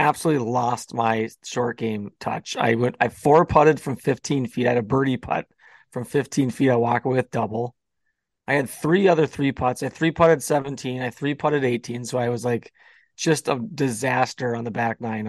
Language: English